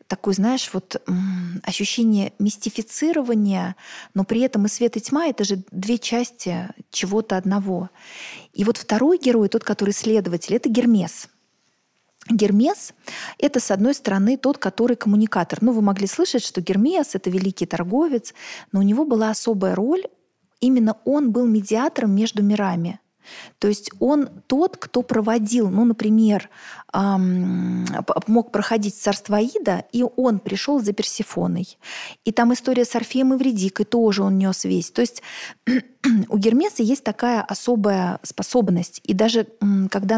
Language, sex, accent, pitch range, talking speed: Russian, female, native, 195-240 Hz, 145 wpm